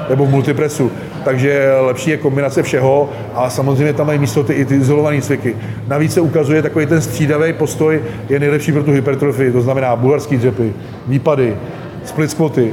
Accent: native